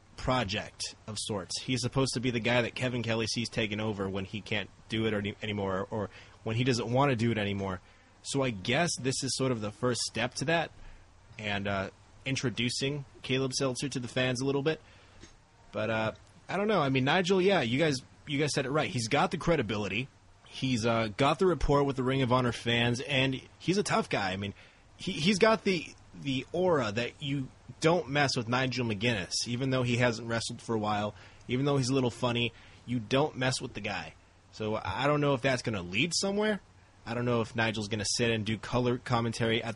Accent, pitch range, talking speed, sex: American, 100-130 Hz, 225 wpm, male